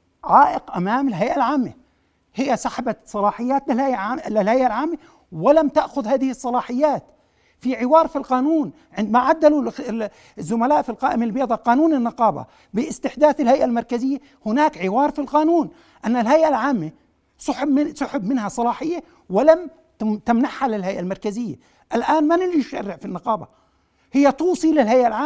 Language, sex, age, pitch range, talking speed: Arabic, male, 60-79, 240-310 Hz, 120 wpm